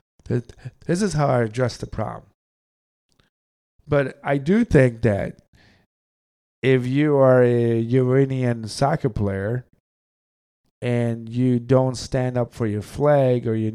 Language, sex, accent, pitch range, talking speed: English, male, American, 115-140 Hz, 125 wpm